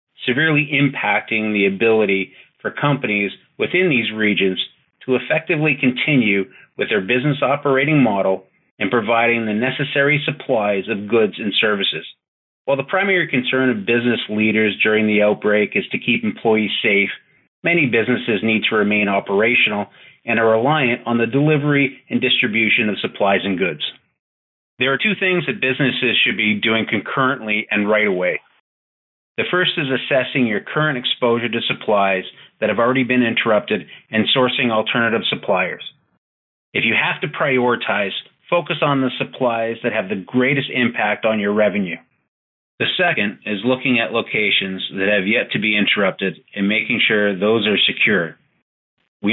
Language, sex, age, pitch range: English, male, 30-49, 105-130 Hz